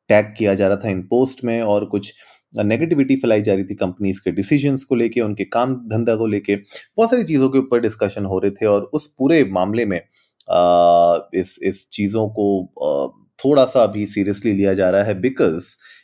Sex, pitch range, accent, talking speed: male, 100-125 Hz, native, 200 wpm